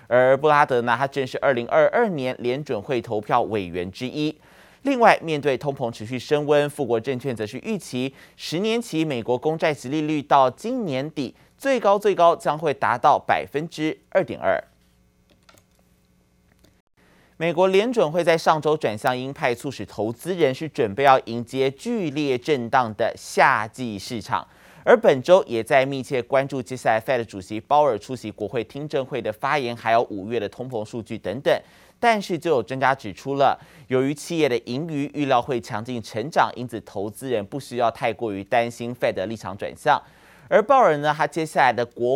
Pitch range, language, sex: 115-150 Hz, Chinese, male